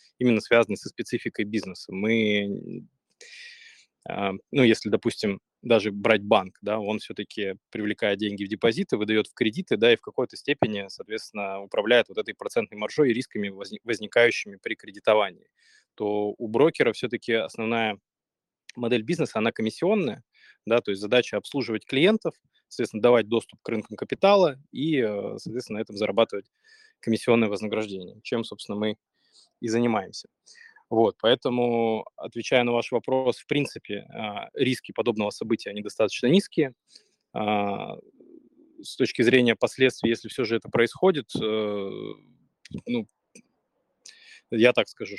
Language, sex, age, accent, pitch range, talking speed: Russian, male, 20-39, native, 105-125 Hz, 130 wpm